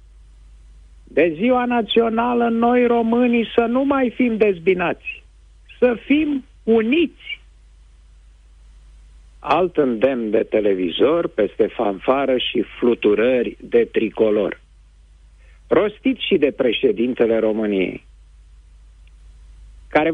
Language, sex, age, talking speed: Romanian, male, 50-69, 85 wpm